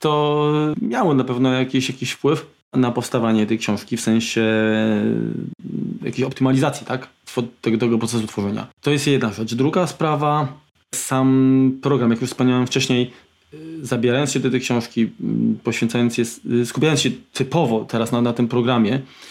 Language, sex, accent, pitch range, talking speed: Polish, male, native, 120-140 Hz, 145 wpm